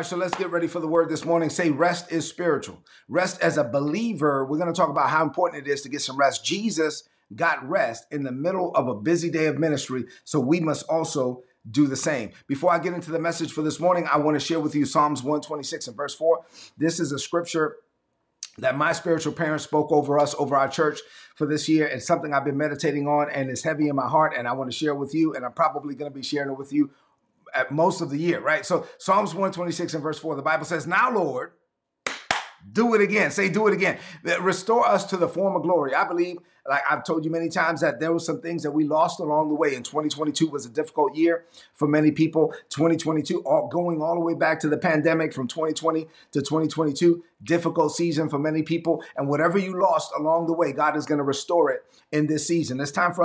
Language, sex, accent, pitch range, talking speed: English, male, American, 150-170 Hz, 240 wpm